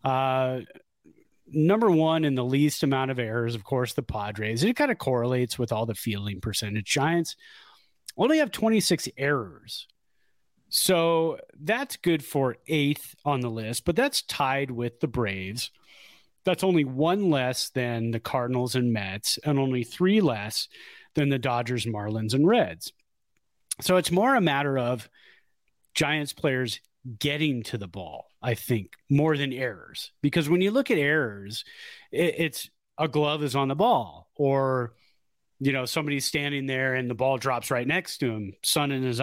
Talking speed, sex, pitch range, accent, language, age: 165 wpm, male, 120-155 Hz, American, English, 30-49